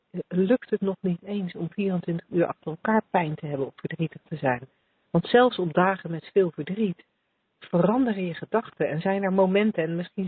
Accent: Dutch